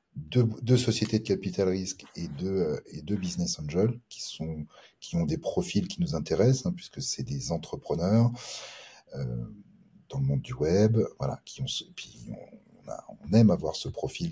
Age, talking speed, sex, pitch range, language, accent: 40-59, 185 wpm, male, 85-115 Hz, French, French